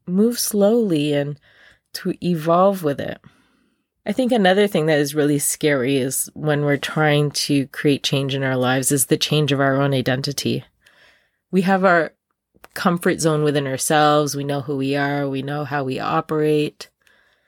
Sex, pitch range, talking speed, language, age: female, 140-175 Hz, 170 wpm, English, 20-39